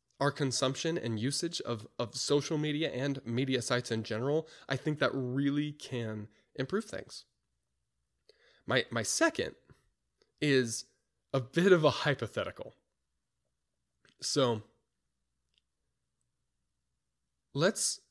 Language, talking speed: English, 105 wpm